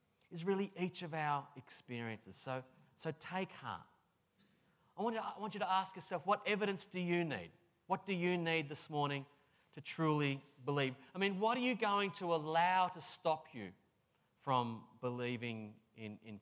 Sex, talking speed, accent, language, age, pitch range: male, 180 wpm, Australian, English, 30-49, 130-175 Hz